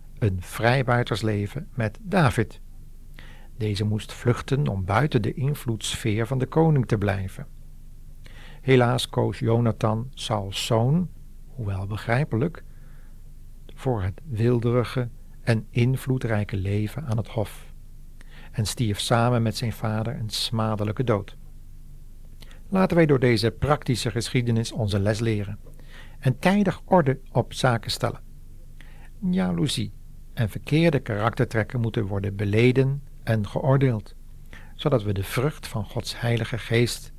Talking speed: 120 wpm